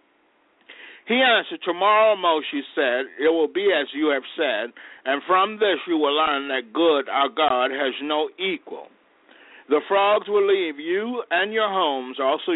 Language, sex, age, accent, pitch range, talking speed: English, male, 60-79, American, 150-235 Hz, 165 wpm